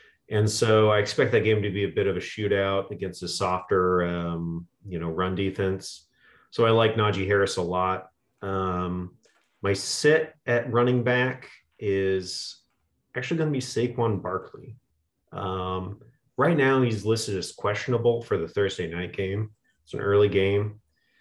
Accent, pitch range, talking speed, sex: American, 90-110 Hz, 160 wpm, male